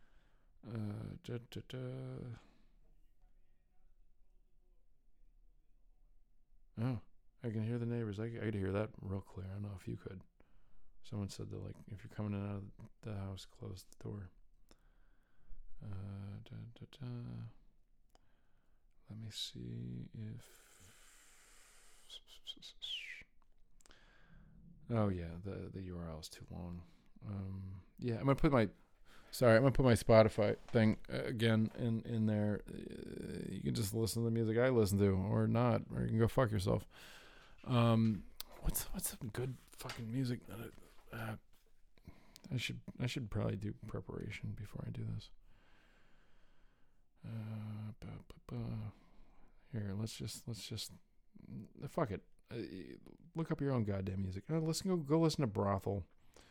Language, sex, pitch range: English, male, 100-120 Hz